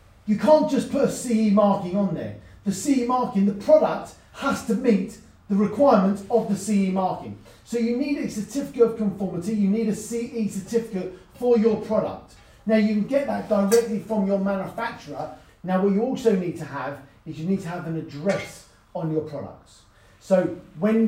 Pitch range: 170-220 Hz